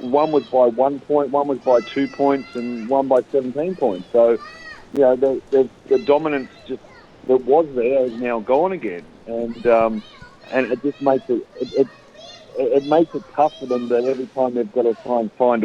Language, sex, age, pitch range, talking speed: English, male, 50-69, 115-140 Hz, 205 wpm